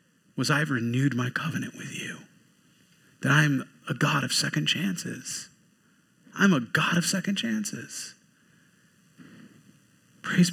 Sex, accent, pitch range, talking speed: male, American, 145-195 Hz, 120 wpm